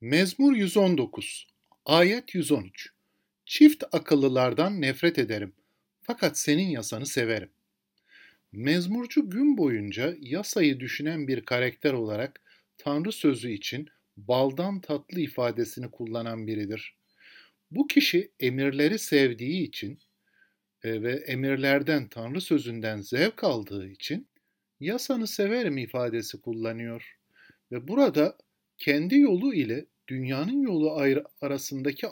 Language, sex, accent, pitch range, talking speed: Turkish, male, native, 125-200 Hz, 95 wpm